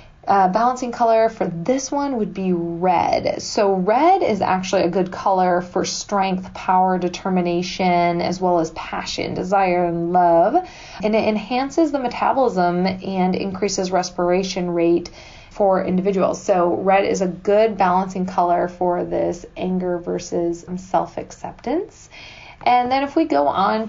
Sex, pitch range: female, 180-200 Hz